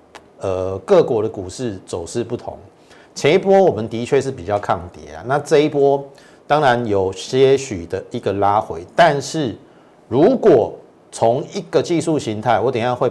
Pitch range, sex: 95-130 Hz, male